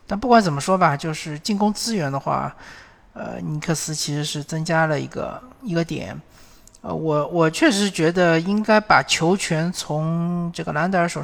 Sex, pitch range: male, 145-170 Hz